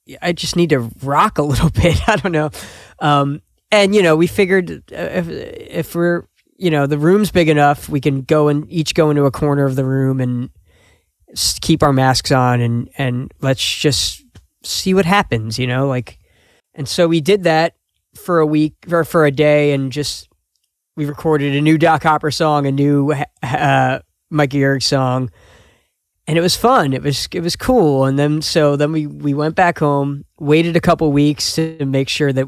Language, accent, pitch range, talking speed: English, American, 135-165 Hz, 200 wpm